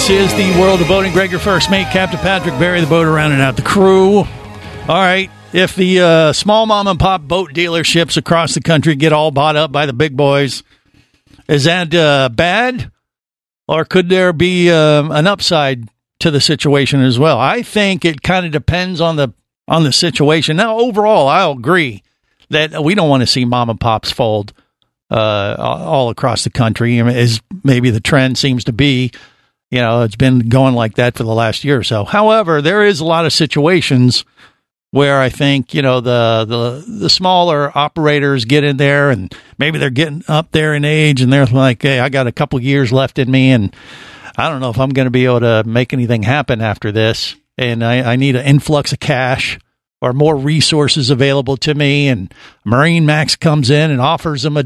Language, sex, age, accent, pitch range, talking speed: English, male, 50-69, American, 125-170 Hz, 205 wpm